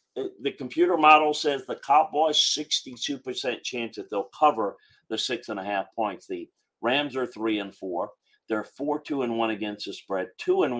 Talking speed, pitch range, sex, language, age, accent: 185 wpm, 105-135 Hz, male, English, 50-69, American